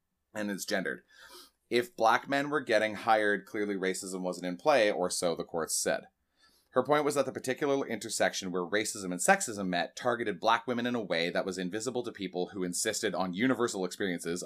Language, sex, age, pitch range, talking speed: English, male, 30-49, 95-125 Hz, 195 wpm